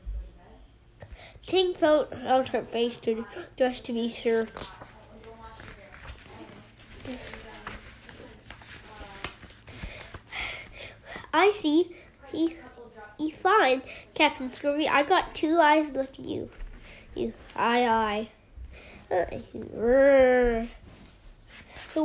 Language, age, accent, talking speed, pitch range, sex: English, 10-29, American, 75 wpm, 240-330 Hz, female